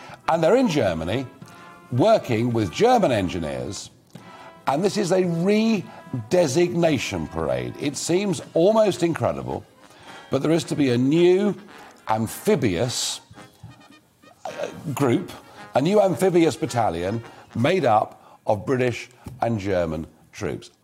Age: 50-69